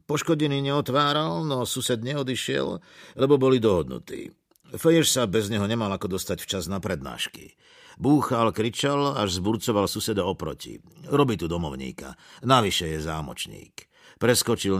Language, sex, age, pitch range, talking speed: Slovak, male, 50-69, 95-130 Hz, 125 wpm